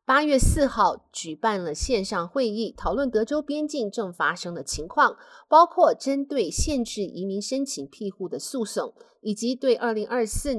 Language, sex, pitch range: Chinese, female, 190-275 Hz